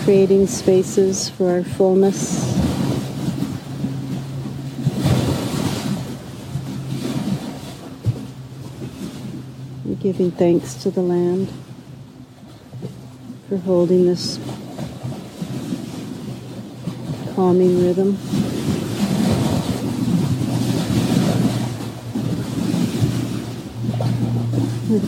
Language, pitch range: English, 110-185 Hz